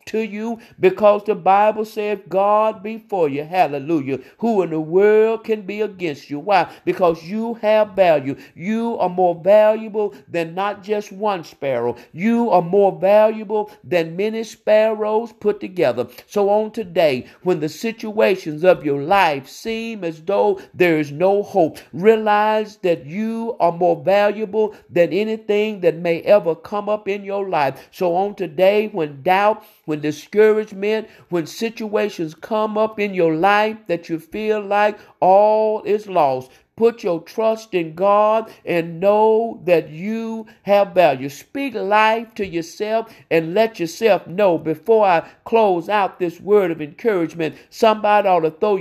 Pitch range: 170-215 Hz